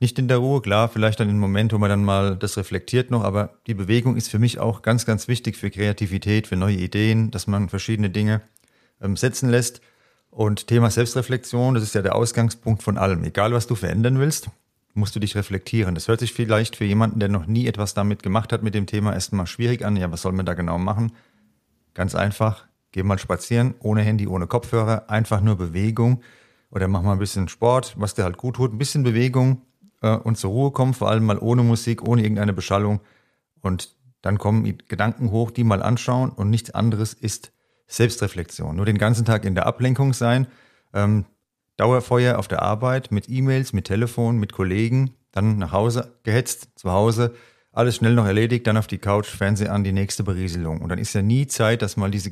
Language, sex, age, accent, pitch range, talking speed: German, male, 40-59, German, 100-120 Hz, 205 wpm